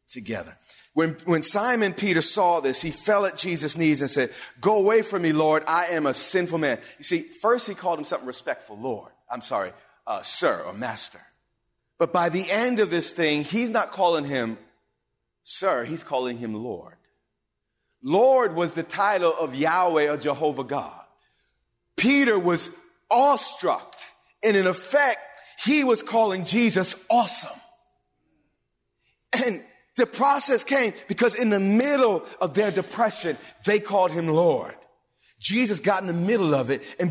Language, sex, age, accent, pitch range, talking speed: English, male, 40-59, American, 160-225 Hz, 155 wpm